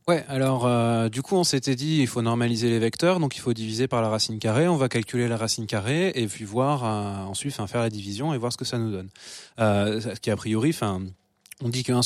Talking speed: 265 wpm